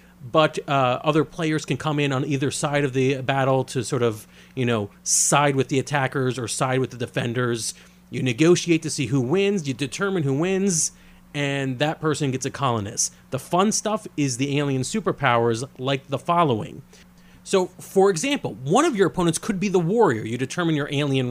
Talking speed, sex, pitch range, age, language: 190 wpm, male, 130-180 Hz, 30-49, English